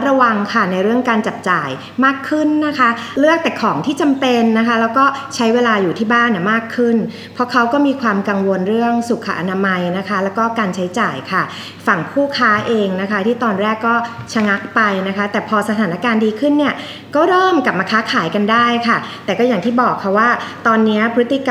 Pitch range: 205-255 Hz